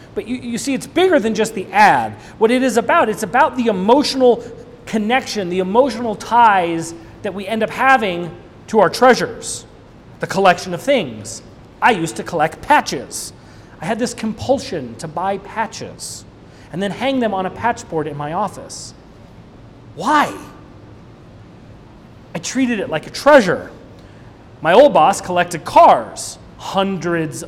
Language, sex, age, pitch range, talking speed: English, male, 30-49, 150-220 Hz, 155 wpm